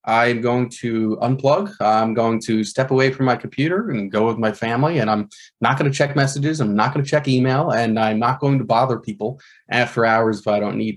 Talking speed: 225 wpm